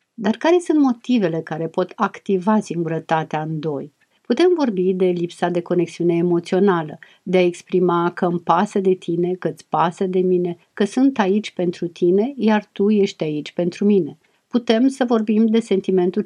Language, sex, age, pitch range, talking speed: Romanian, female, 50-69, 170-220 Hz, 170 wpm